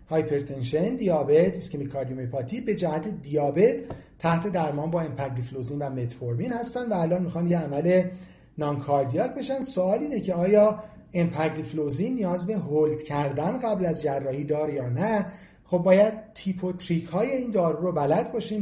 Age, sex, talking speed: 40-59, male, 155 wpm